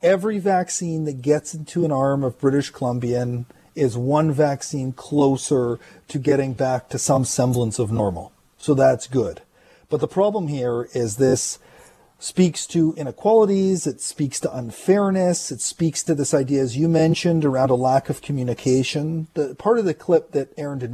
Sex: male